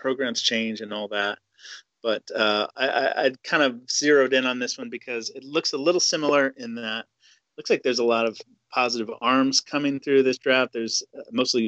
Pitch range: 110-135 Hz